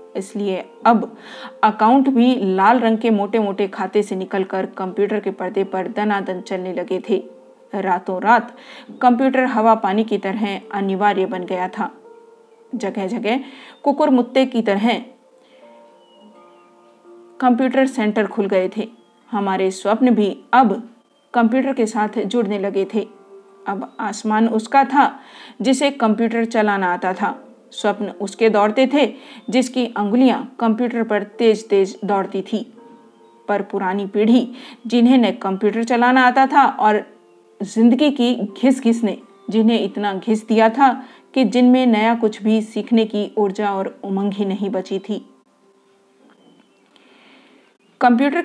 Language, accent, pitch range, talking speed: Hindi, native, 195-240 Hz, 130 wpm